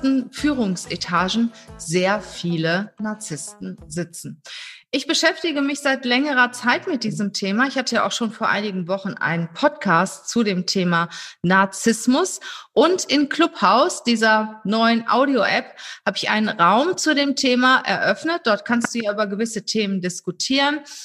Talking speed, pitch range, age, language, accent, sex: 145 wpm, 205-275 Hz, 30-49, German, German, female